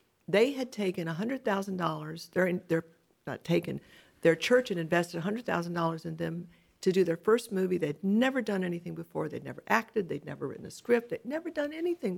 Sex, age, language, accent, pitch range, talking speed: female, 50-69, English, American, 170-220 Hz, 205 wpm